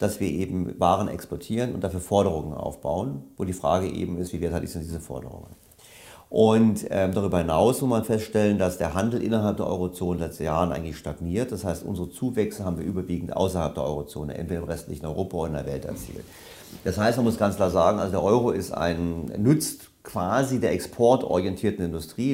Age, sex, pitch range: 40-59, male, 85-110 Hz